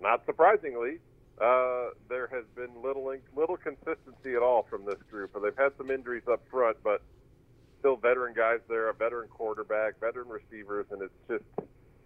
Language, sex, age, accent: English, male, 40-59, American